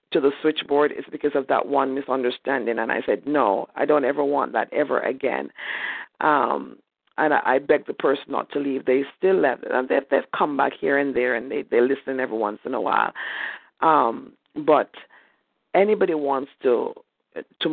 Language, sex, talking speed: English, female, 190 wpm